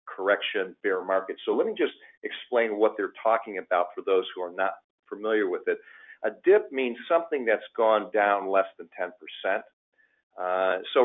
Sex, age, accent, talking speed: male, 50-69, American, 175 wpm